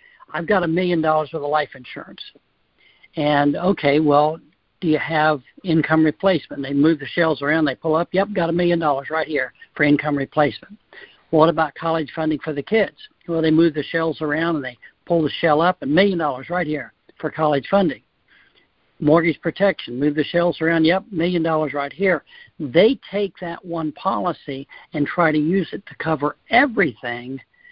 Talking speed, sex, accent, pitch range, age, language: 185 wpm, male, American, 145-175 Hz, 60-79, English